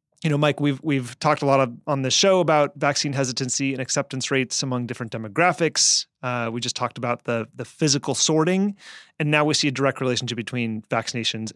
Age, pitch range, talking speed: 30-49, 130-160 Hz, 200 wpm